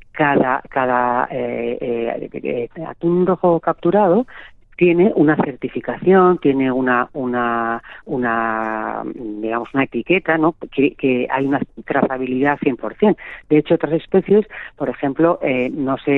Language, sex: Spanish, female